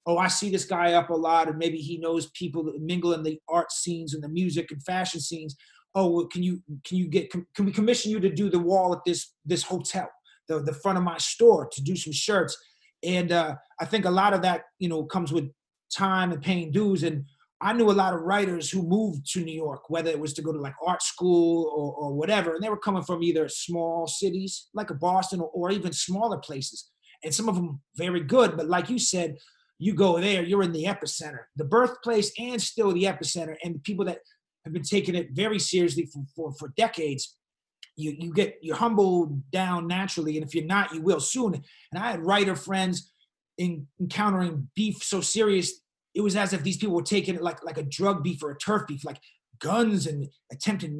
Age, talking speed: 30-49, 225 wpm